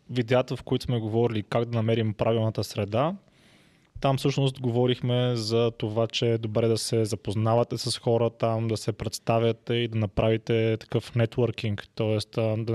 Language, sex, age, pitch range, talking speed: Bulgarian, male, 20-39, 115-130 Hz, 160 wpm